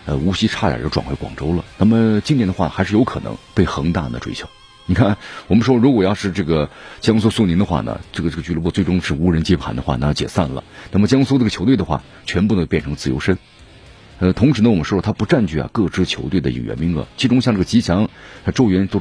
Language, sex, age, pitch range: Chinese, male, 50-69, 85-115 Hz